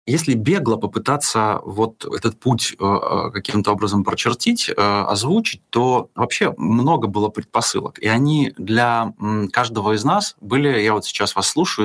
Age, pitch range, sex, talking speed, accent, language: 20-39, 105-120 Hz, male, 135 wpm, native, Russian